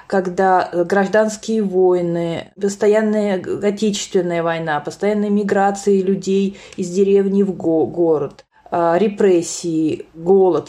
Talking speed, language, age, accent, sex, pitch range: 85 wpm, Russian, 20-39, native, female, 190-230 Hz